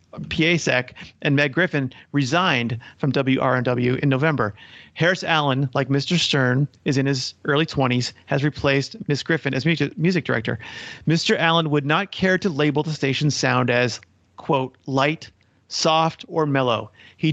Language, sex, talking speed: English, male, 150 wpm